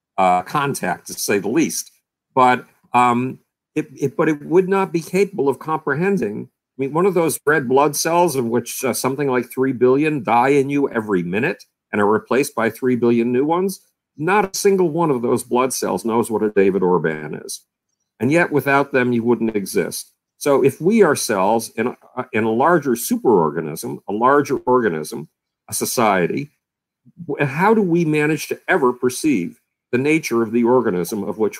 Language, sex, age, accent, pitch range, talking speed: English, male, 50-69, American, 120-155 Hz, 180 wpm